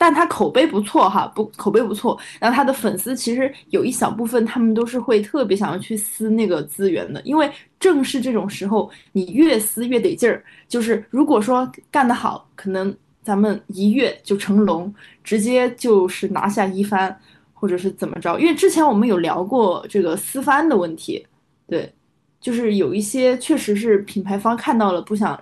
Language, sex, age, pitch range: Chinese, female, 20-39, 195-250 Hz